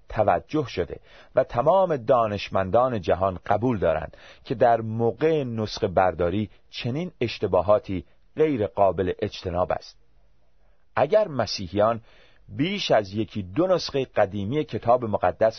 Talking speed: 110 wpm